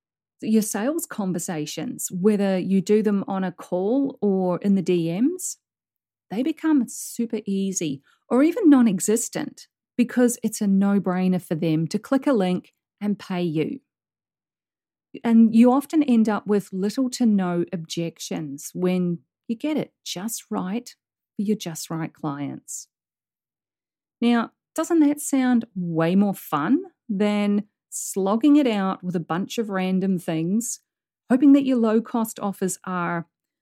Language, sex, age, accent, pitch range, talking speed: English, female, 40-59, Australian, 180-240 Hz, 145 wpm